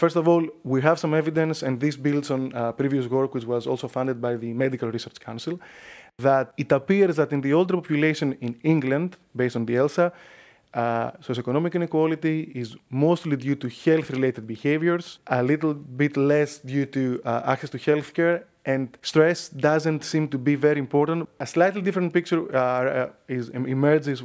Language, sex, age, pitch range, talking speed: English, male, 20-39, 125-155 Hz, 175 wpm